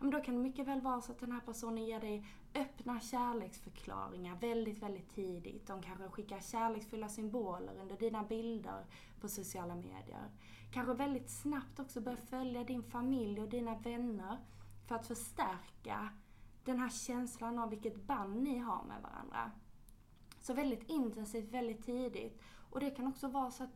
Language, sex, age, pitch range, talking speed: English, female, 20-39, 200-250 Hz, 165 wpm